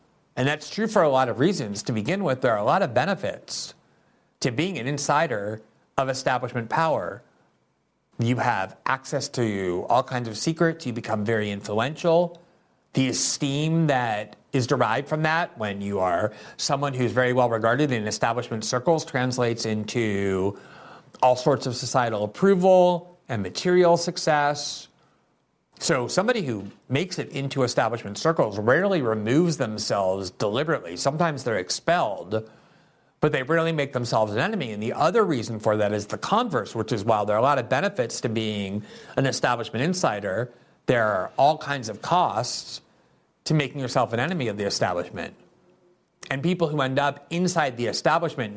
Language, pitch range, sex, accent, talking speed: English, 110-150 Hz, male, American, 160 wpm